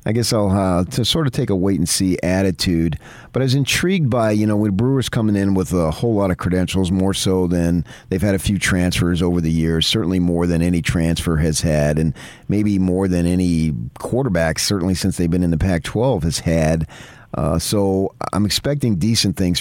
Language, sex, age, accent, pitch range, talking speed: English, male, 40-59, American, 85-105 Hz, 205 wpm